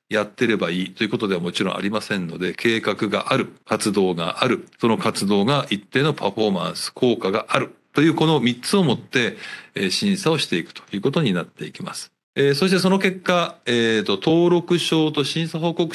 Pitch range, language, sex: 100-155 Hz, Japanese, male